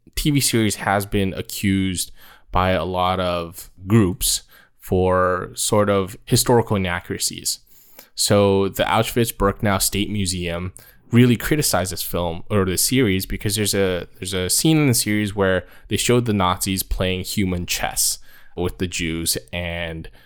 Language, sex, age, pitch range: English, male, 20-39, 90-110 Hz